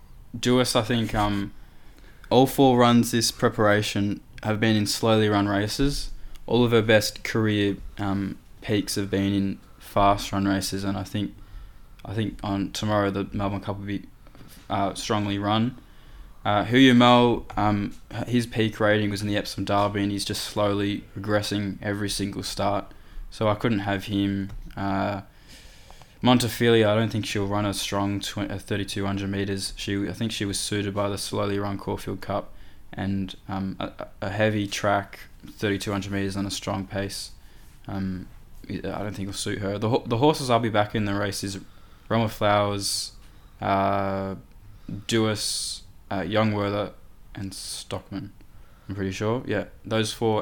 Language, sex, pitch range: English, male, 100-110 Hz